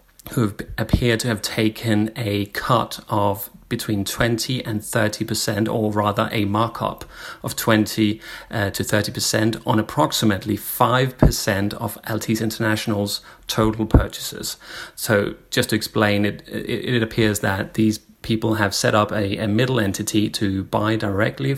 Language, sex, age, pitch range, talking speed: English, male, 30-49, 100-115 Hz, 145 wpm